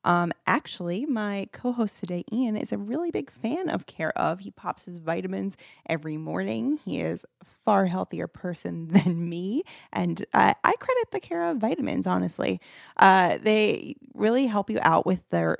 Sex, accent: female, American